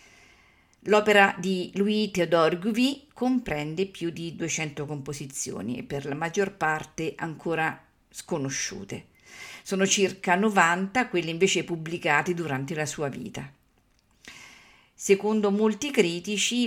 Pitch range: 155-205 Hz